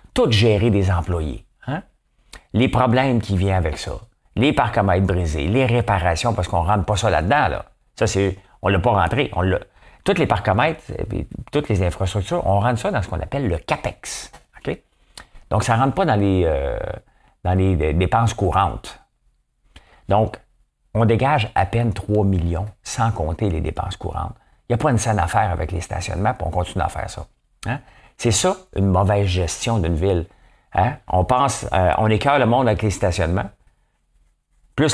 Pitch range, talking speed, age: 90-115 Hz, 190 wpm, 50-69